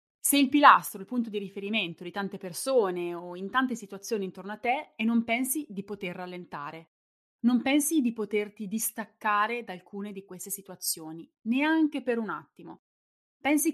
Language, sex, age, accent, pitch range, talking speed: Italian, female, 20-39, native, 185-245 Hz, 165 wpm